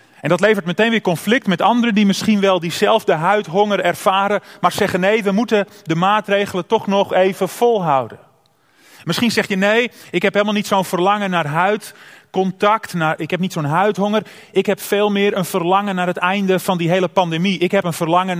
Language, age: Dutch, 30-49